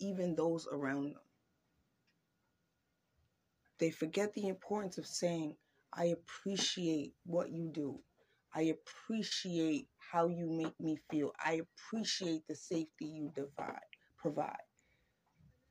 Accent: American